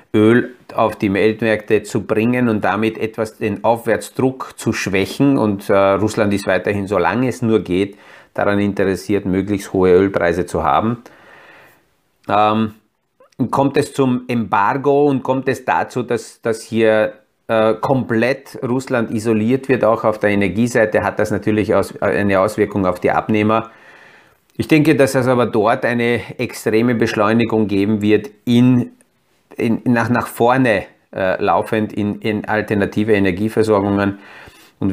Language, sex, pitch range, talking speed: German, male, 105-120 Hz, 140 wpm